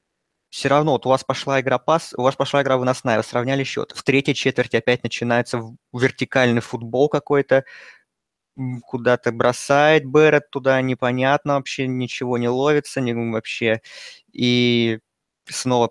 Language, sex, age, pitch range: Russian, male, 20-39, 120-140 Hz